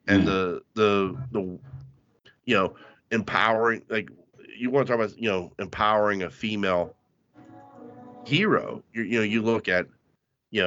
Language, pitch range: English, 100-130 Hz